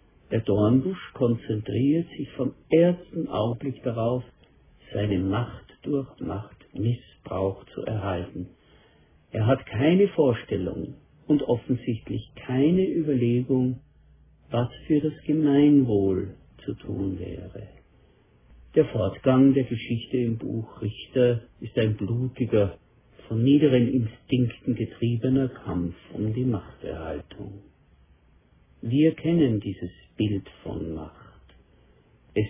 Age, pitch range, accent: 50-69, 100-135 Hz, German